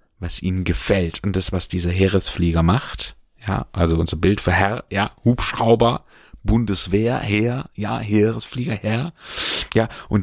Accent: German